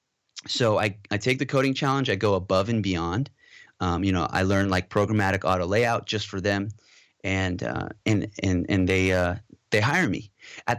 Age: 30-49